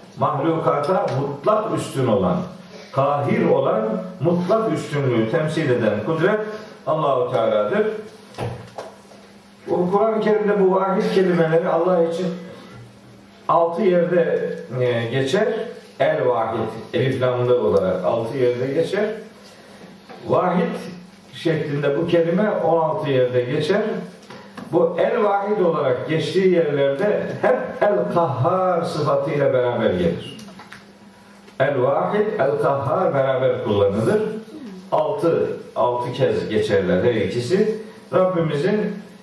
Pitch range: 140-205 Hz